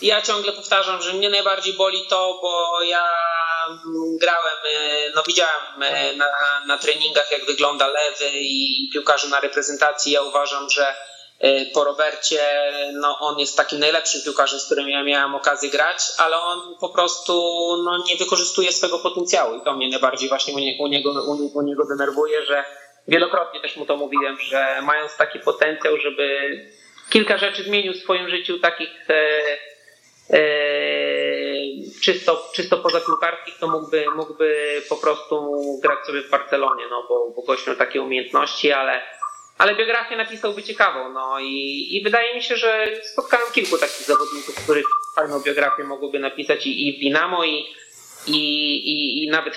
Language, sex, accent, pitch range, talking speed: Polish, male, native, 145-190 Hz, 160 wpm